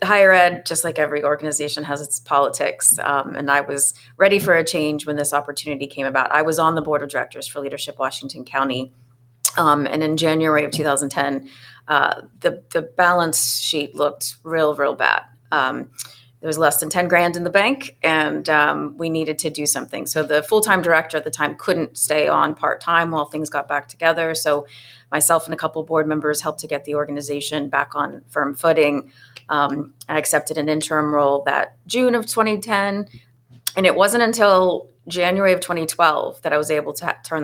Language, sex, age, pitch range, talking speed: English, female, 30-49, 140-165 Hz, 195 wpm